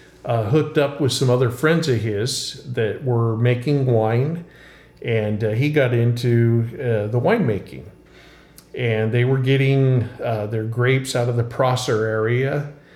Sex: male